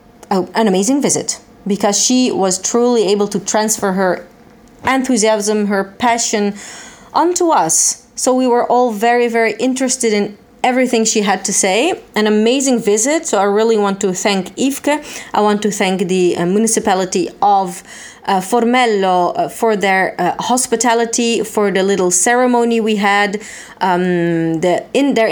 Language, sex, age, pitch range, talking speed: Italian, female, 30-49, 185-235 Hz, 150 wpm